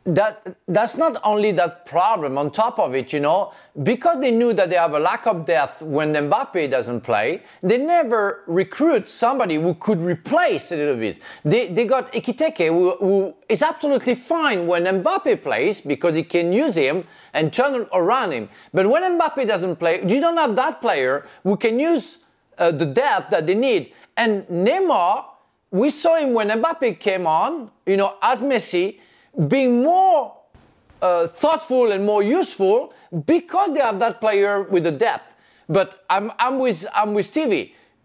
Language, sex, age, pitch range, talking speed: English, male, 40-59, 180-300 Hz, 175 wpm